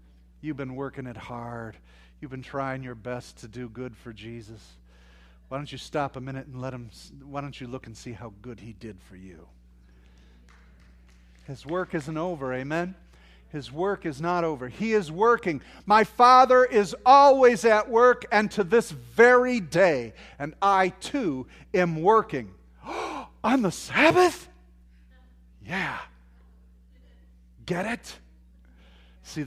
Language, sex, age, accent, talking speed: English, male, 40-59, American, 145 wpm